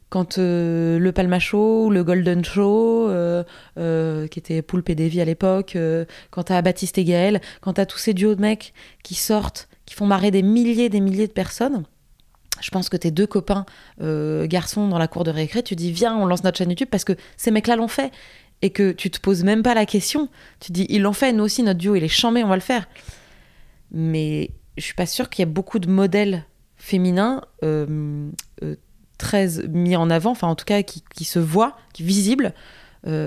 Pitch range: 165-210 Hz